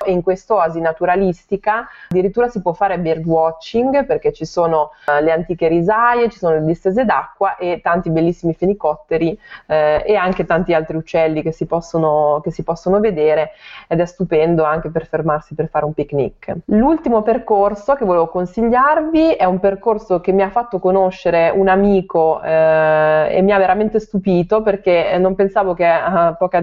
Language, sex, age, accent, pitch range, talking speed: Italian, female, 20-39, native, 165-200 Hz, 165 wpm